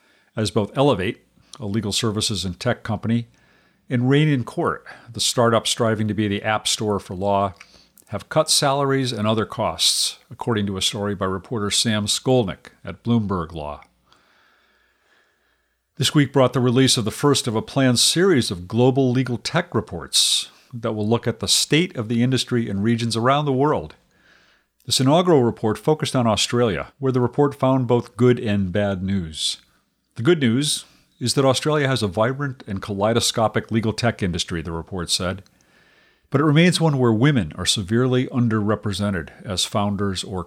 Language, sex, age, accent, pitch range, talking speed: English, male, 50-69, American, 100-130 Hz, 170 wpm